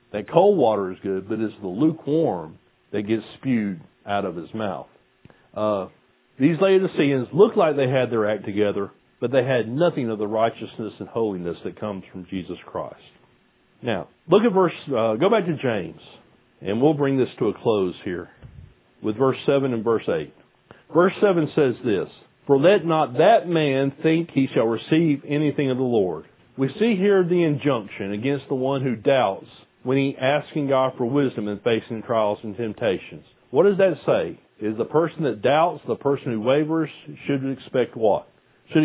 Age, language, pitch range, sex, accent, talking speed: 40-59, English, 110-150 Hz, male, American, 180 wpm